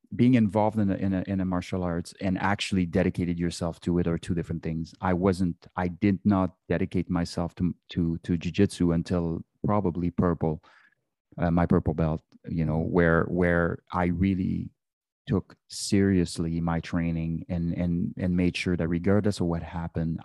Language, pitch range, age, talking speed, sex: English, 85-95 Hz, 30-49, 170 wpm, male